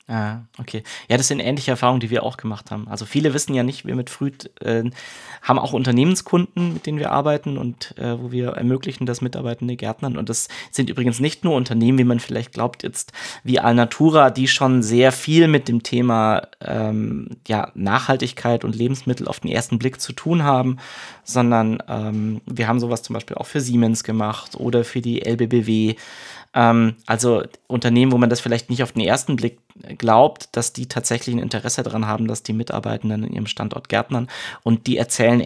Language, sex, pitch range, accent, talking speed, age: German, male, 115-130 Hz, German, 190 wpm, 20-39